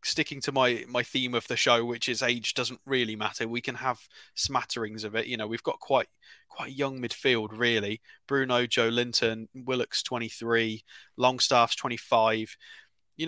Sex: male